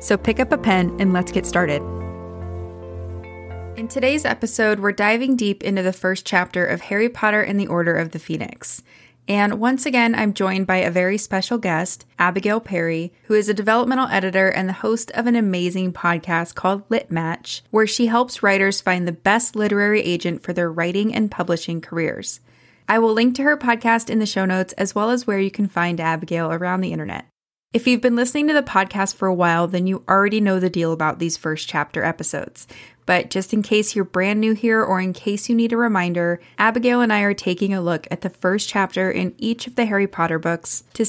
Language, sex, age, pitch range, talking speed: English, female, 20-39, 175-220 Hz, 215 wpm